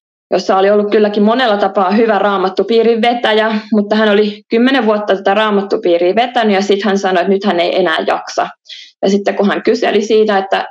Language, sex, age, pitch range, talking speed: Finnish, female, 20-39, 185-225 Hz, 185 wpm